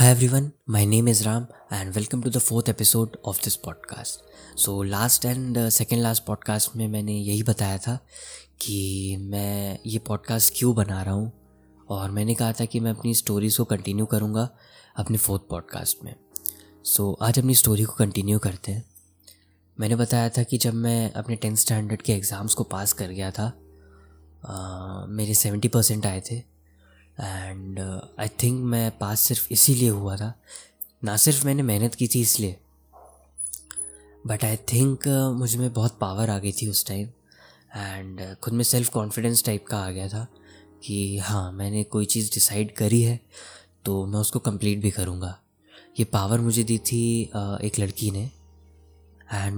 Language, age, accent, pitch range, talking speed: Hindi, 20-39, native, 100-115 Hz, 170 wpm